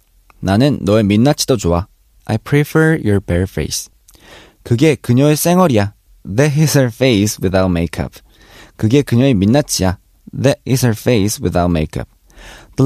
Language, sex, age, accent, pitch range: Korean, male, 20-39, native, 100-150 Hz